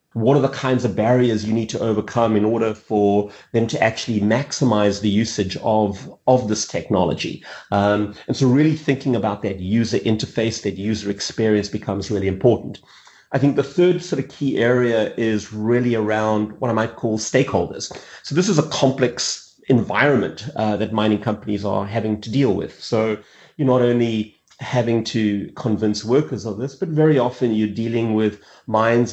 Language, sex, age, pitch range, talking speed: English, male, 30-49, 105-120 Hz, 175 wpm